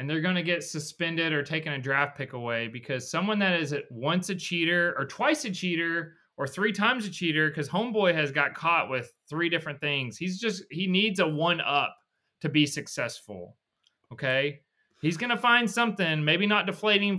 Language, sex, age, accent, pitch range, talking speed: English, male, 30-49, American, 125-170 Hz, 200 wpm